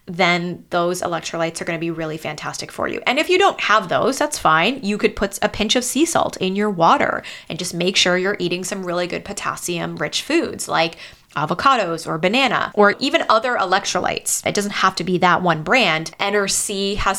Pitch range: 170-210 Hz